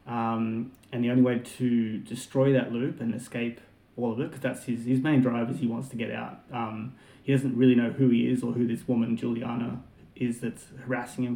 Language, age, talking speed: English, 30-49, 225 wpm